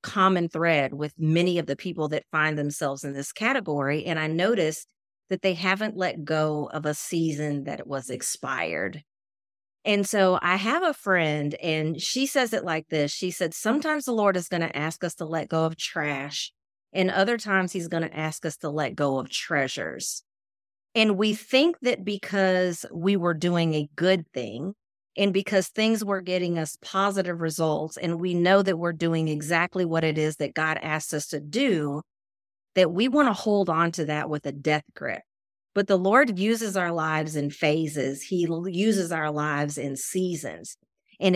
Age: 40-59